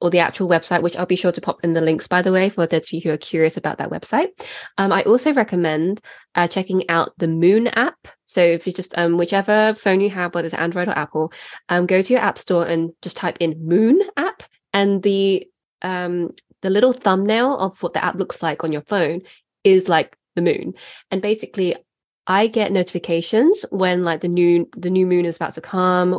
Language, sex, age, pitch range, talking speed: English, female, 20-39, 170-200 Hz, 220 wpm